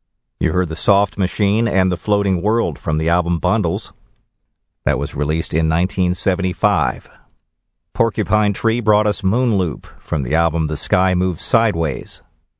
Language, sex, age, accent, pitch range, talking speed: English, male, 50-69, American, 80-95 Hz, 150 wpm